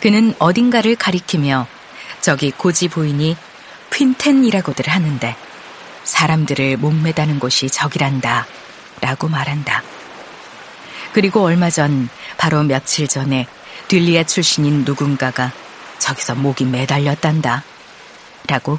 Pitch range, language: 135-170 Hz, Korean